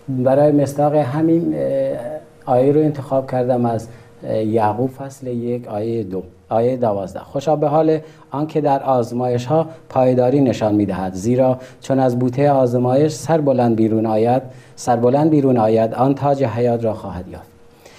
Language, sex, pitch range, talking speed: Persian, male, 115-140 Hz, 140 wpm